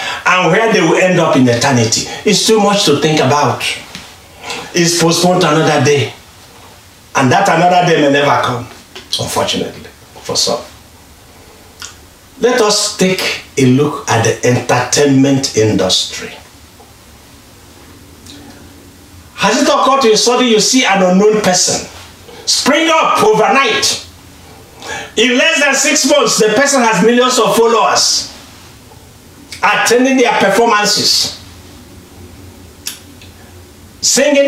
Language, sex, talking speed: English, male, 120 wpm